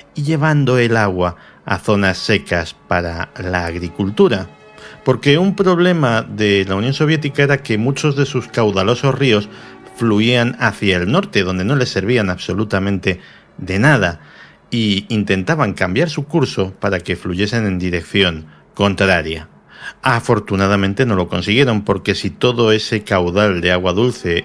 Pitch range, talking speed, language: 90-120 Hz, 140 wpm, Spanish